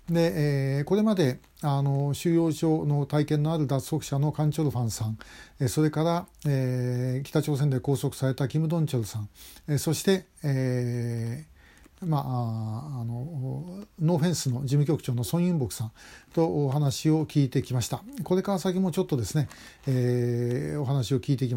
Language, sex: Japanese, male